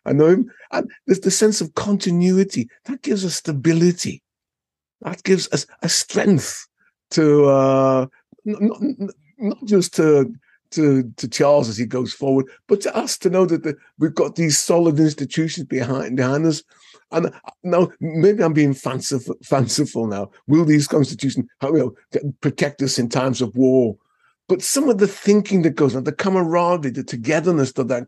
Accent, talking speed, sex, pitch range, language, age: British, 175 wpm, male, 140-190 Hz, English, 50-69